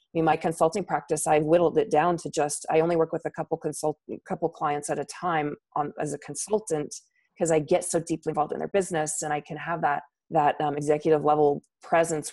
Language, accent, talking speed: English, American, 225 wpm